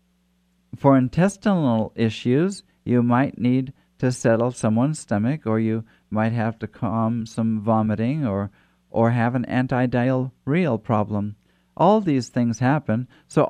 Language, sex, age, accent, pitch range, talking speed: English, male, 50-69, American, 105-145 Hz, 130 wpm